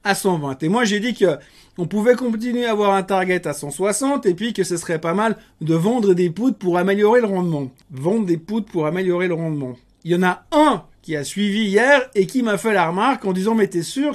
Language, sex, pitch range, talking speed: French, male, 170-225 Hz, 250 wpm